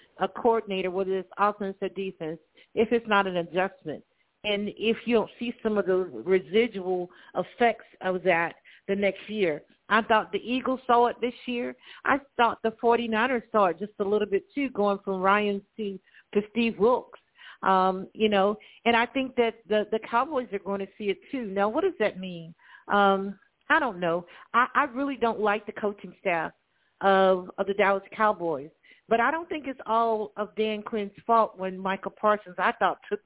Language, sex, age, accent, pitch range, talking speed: English, female, 50-69, American, 195-235 Hz, 190 wpm